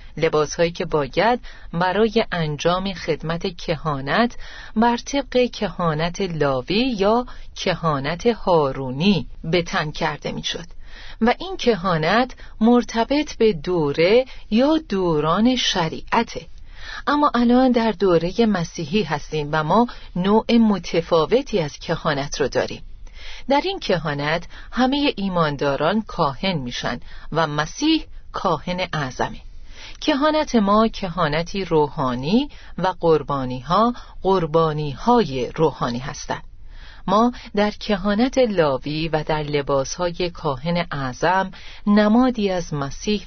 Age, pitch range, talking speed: 40-59, 155-225 Hz, 105 wpm